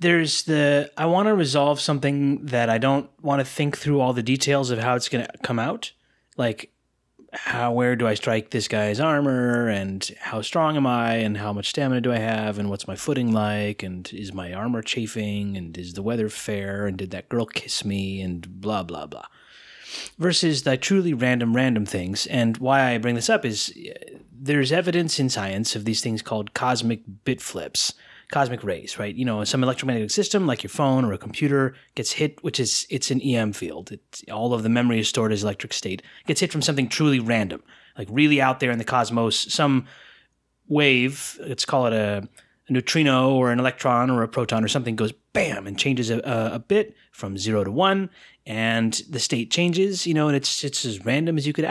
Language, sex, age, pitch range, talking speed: English, male, 30-49, 110-140 Hz, 210 wpm